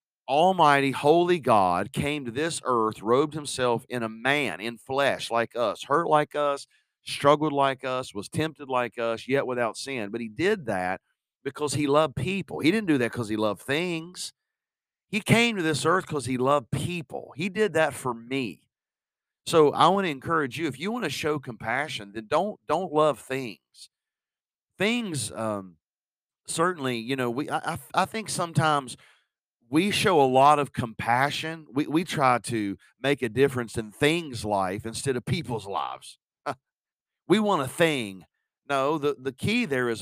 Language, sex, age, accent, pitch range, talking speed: English, male, 40-59, American, 125-165 Hz, 175 wpm